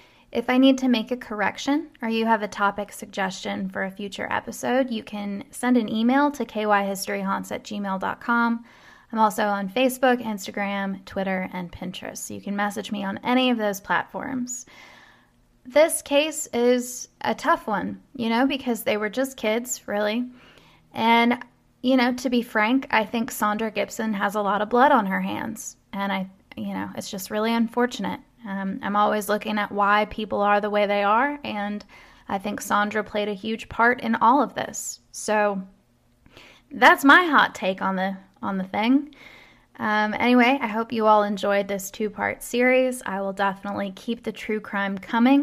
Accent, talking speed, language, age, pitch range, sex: American, 175 wpm, English, 10-29, 200-245 Hz, female